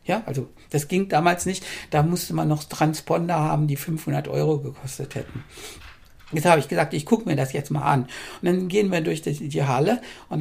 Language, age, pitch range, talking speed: German, 60-79, 145-185 Hz, 215 wpm